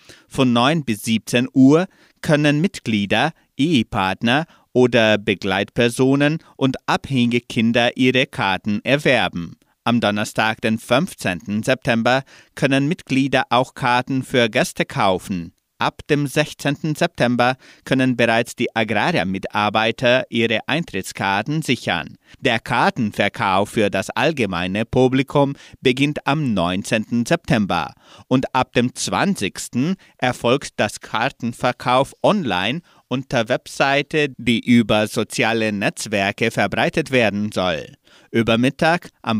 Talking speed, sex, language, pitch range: 105 wpm, male, German, 110-140 Hz